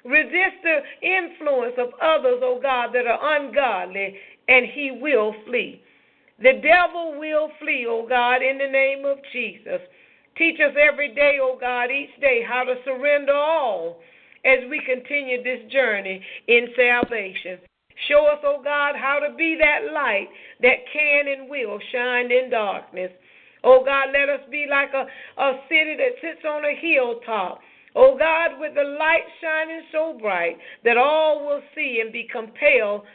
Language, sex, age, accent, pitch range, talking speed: English, female, 50-69, American, 245-305 Hz, 160 wpm